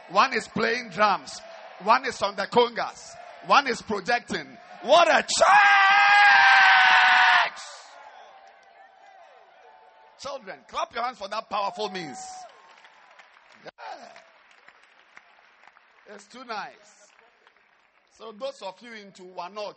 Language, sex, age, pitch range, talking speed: English, male, 50-69, 180-235 Hz, 100 wpm